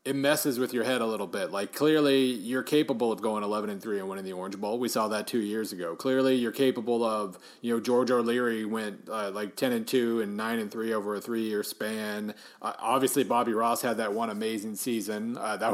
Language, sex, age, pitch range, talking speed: English, male, 30-49, 110-140 Hz, 235 wpm